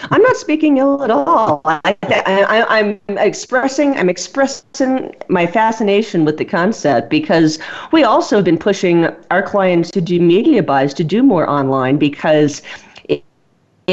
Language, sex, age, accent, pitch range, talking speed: English, female, 40-59, American, 150-185 Hz, 150 wpm